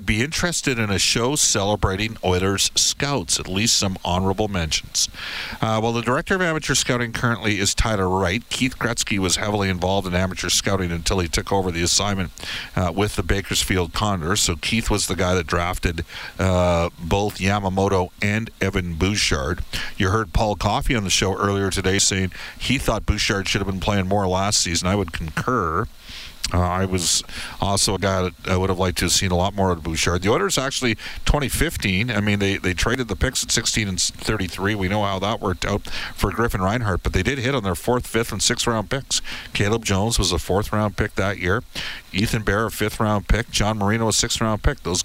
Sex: male